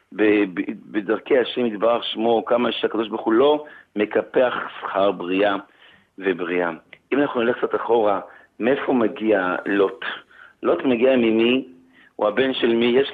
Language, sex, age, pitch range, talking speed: Hebrew, male, 50-69, 105-130 Hz, 130 wpm